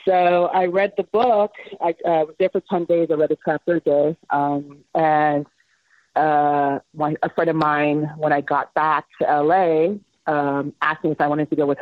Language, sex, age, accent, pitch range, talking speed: English, female, 30-49, American, 150-185 Hz, 210 wpm